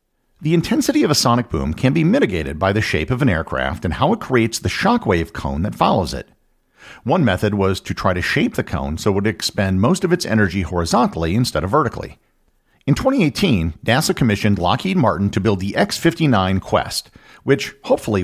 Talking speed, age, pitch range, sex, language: 195 wpm, 50-69, 90-130 Hz, male, English